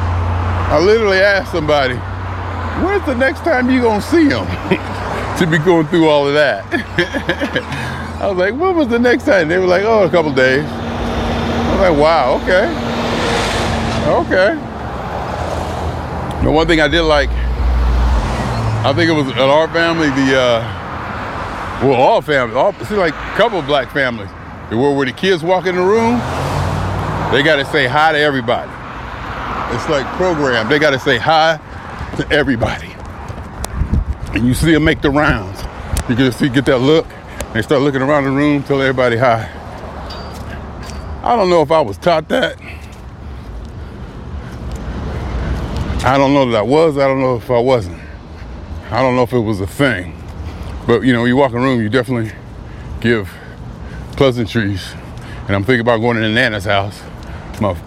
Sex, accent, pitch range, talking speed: male, American, 90-150 Hz, 170 wpm